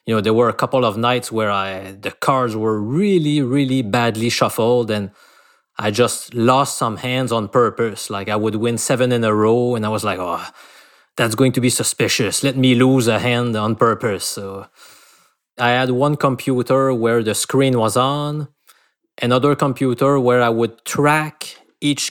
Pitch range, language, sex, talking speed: 110-135 Hz, English, male, 180 wpm